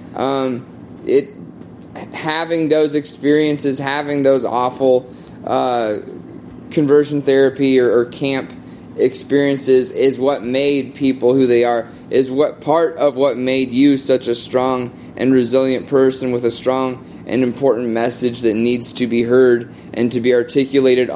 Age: 20-39